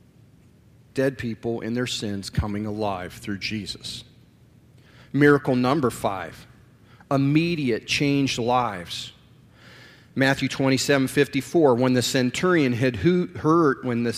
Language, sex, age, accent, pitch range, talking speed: English, male, 40-59, American, 125-155 Hz, 110 wpm